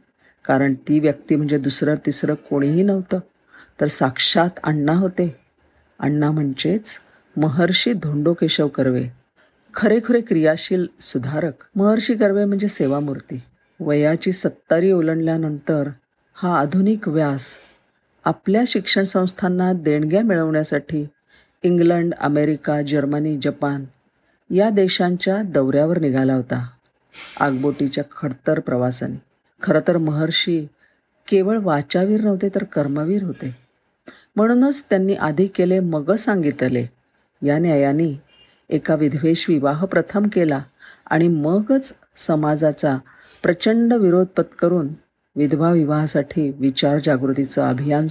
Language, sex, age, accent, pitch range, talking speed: Marathi, female, 50-69, native, 145-185 Hz, 100 wpm